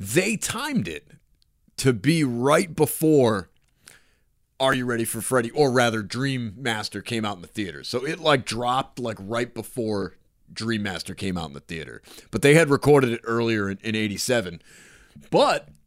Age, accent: 30-49, American